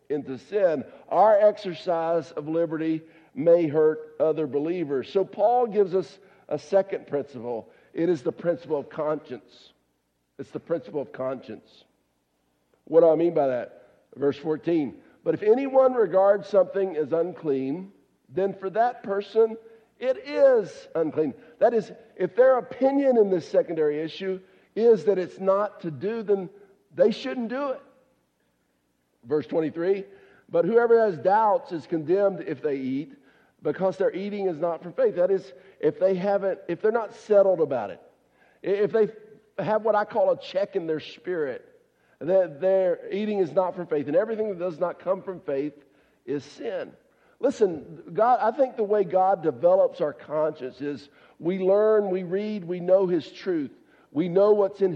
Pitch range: 160-215 Hz